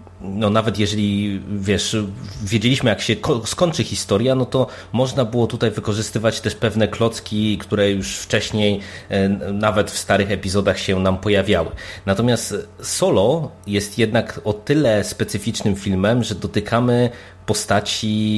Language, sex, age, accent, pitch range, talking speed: Polish, male, 30-49, native, 95-110 Hz, 125 wpm